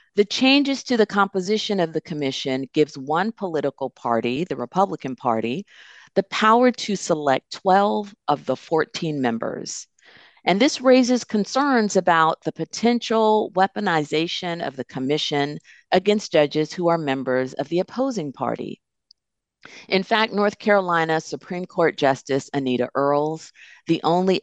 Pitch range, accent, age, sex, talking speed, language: 135-205 Hz, American, 50-69, female, 135 wpm, English